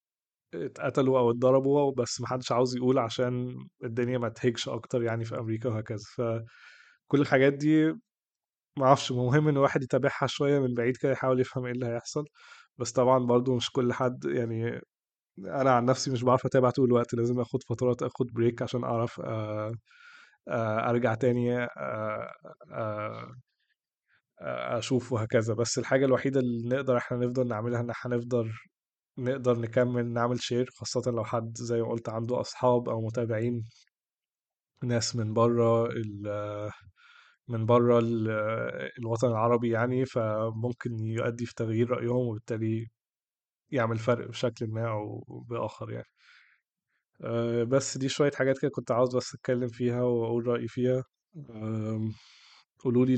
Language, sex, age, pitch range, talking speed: Arabic, male, 20-39, 115-130 Hz, 135 wpm